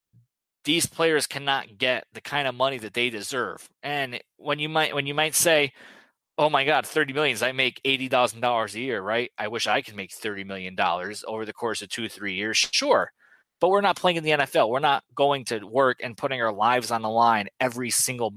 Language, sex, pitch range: English, male, 115-140 Hz